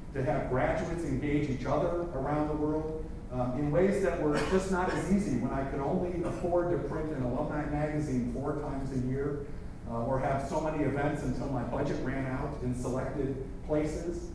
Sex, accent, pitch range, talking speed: male, American, 125-150 Hz, 190 wpm